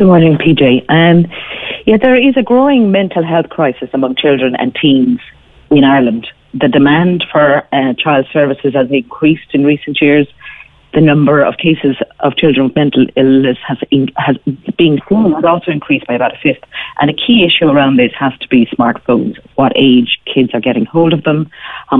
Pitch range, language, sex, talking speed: 130-160 Hz, English, female, 190 wpm